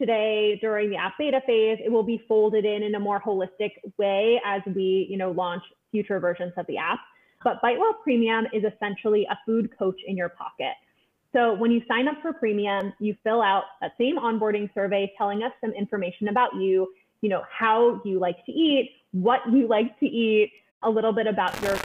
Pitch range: 195-240 Hz